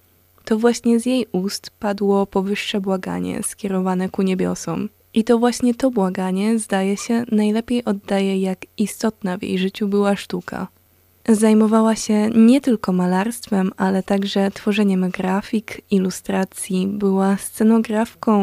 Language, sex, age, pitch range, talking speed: Polish, female, 20-39, 190-220 Hz, 125 wpm